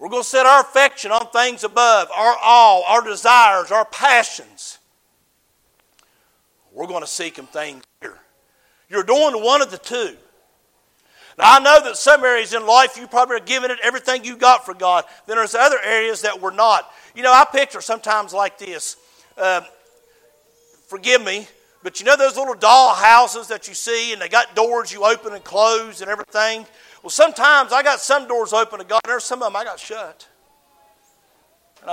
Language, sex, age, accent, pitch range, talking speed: English, male, 50-69, American, 190-255 Hz, 190 wpm